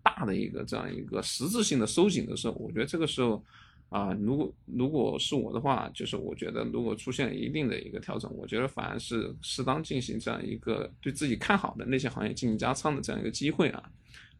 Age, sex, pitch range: 20-39, male, 115-160 Hz